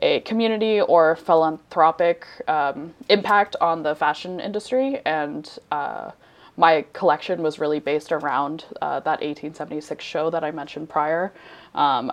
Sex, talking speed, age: female, 135 wpm, 20-39